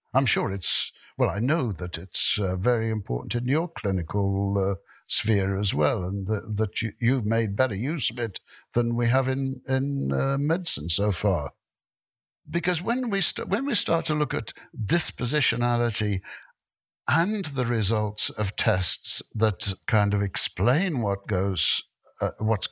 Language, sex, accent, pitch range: English, male, British, 100-135 Hz